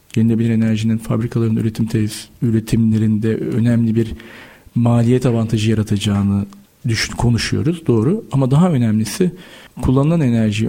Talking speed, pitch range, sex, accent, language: 105 wpm, 110-140 Hz, male, native, Turkish